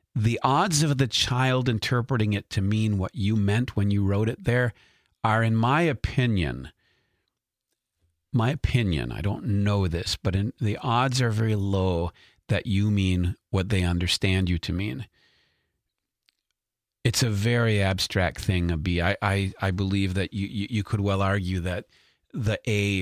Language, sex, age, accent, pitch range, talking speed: English, male, 40-59, American, 95-115 Hz, 165 wpm